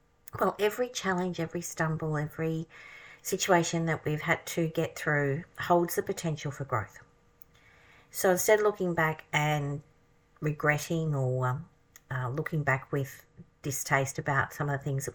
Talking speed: 145 wpm